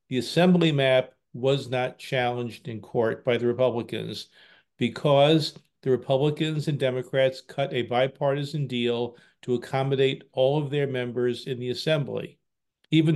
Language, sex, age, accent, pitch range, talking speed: English, male, 50-69, American, 125-145 Hz, 135 wpm